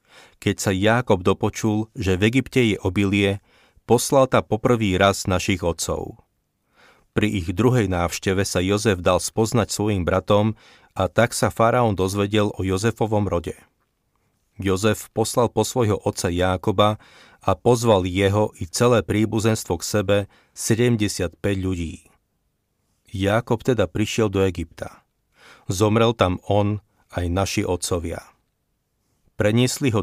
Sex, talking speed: male, 125 wpm